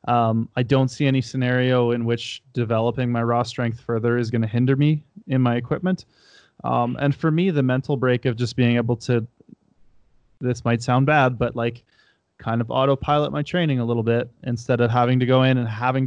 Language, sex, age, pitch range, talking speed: English, male, 20-39, 120-140 Hz, 205 wpm